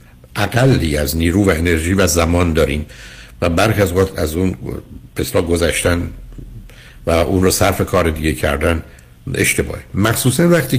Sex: male